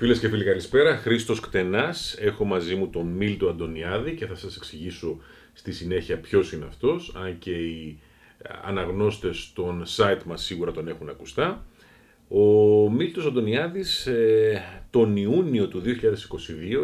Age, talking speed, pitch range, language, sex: 40-59, 140 wpm, 90-120 Hz, Greek, male